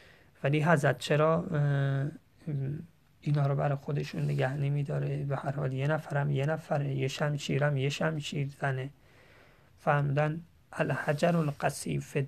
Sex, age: male, 30-49